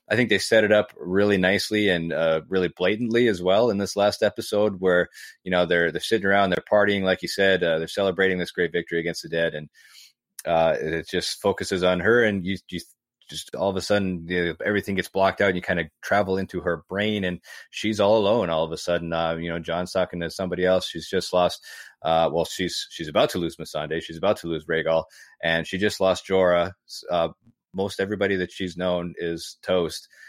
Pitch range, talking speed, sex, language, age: 85-95 Hz, 225 wpm, male, English, 30-49